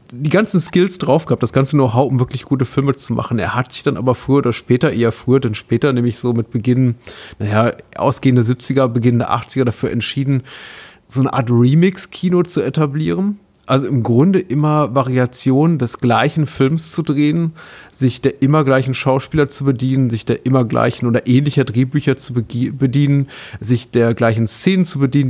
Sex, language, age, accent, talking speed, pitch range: male, German, 30-49, German, 180 wpm, 115-140 Hz